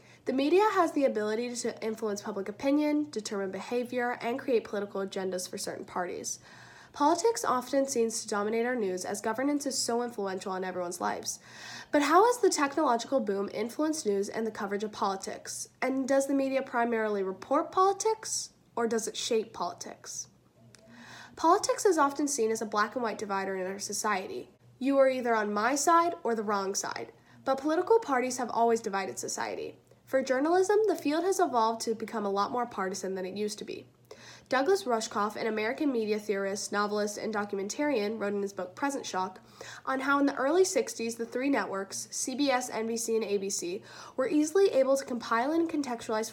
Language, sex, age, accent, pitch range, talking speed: English, female, 10-29, American, 205-275 Hz, 180 wpm